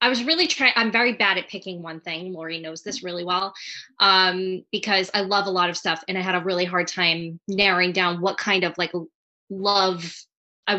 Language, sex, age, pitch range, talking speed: English, female, 20-39, 180-210 Hz, 215 wpm